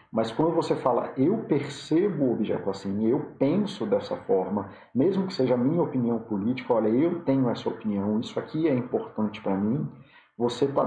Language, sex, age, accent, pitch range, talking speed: Portuguese, male, 40-59, Brazilian, 110-135 Hz, 180 wpm